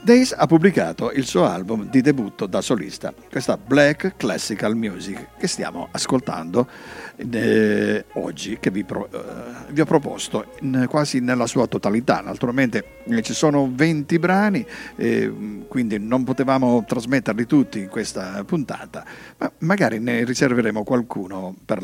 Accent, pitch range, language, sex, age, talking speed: native, 115-160 Hz, Italian, male, 50-69, 130 wpm